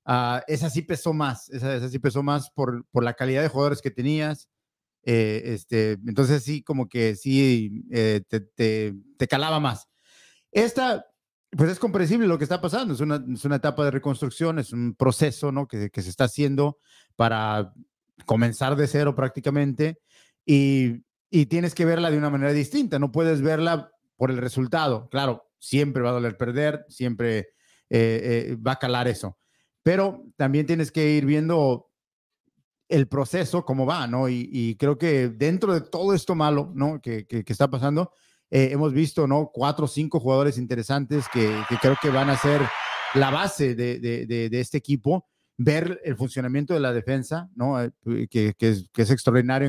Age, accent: 50-69, Mexican